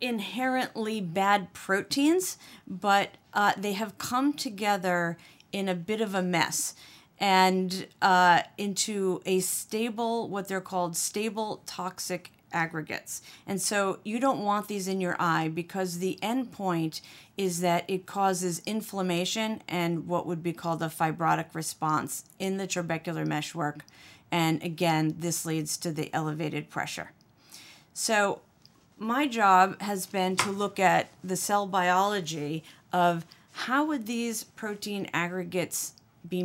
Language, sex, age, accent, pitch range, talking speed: English, female, 40-59, American, 165-200 Hz, 135 wpm